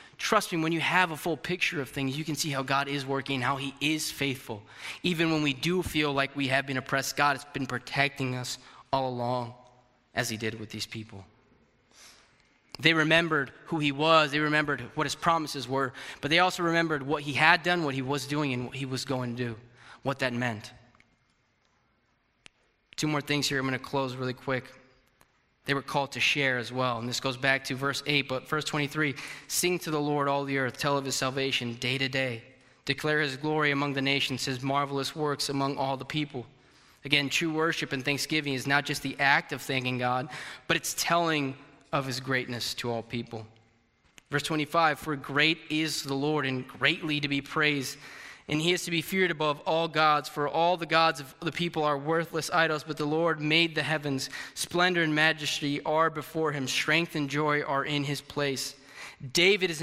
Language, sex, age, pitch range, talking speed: English, male, 20-39, 135-155 Hz, 205 wpm